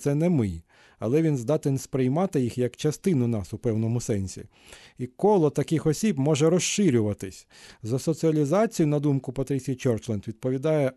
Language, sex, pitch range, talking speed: Ukrainian, male, 125-160 Hz, 150 wpm